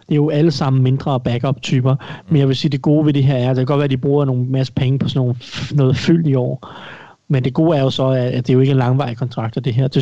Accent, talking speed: native, 310 wpm